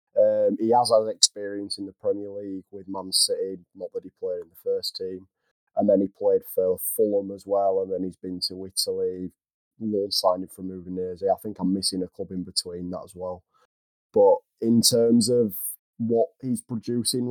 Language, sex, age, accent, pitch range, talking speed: English, male, 20-39, British, 100-120 Hz, 195 wpm